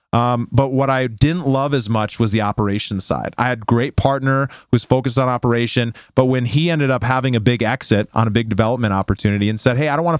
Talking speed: 240 wpm